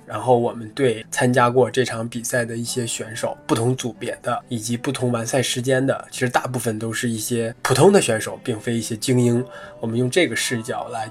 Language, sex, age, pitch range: Chinese, male, 20-39, 115-130 Hz